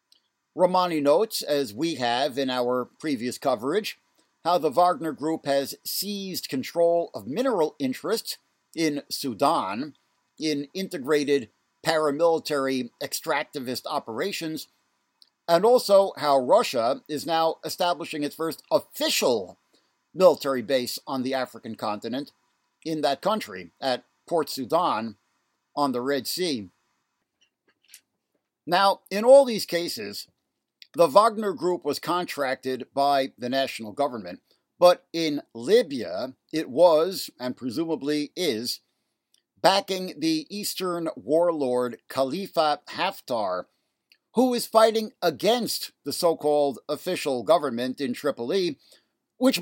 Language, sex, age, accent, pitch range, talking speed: English, male, 60-79, American, 140-180 Hz, 110 wpm